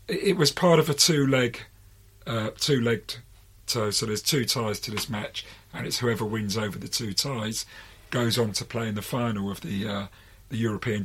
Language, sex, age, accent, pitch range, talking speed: English, male, 40-59, British, 100-130 Hz, 195 wpm